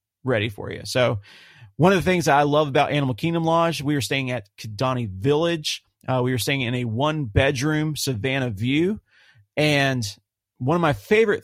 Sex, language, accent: male, English, American